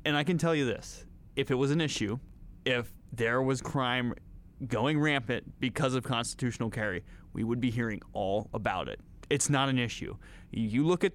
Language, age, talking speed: English, 30-49, 190 wpm